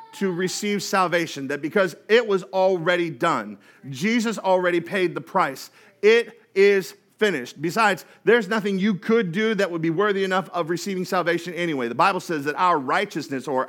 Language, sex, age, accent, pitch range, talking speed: English, male, 40-59, American, 170-215 Hz, 170 wpm